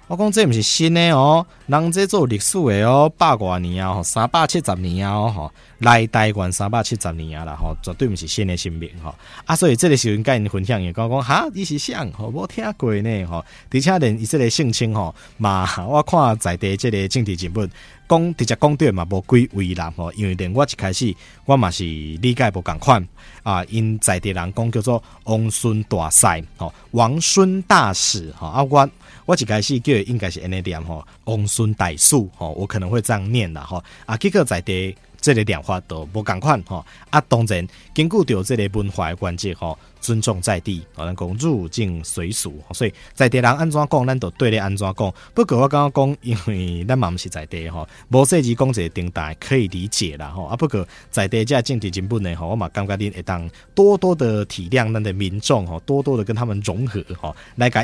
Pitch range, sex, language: 90-125 Hz, male, Chinese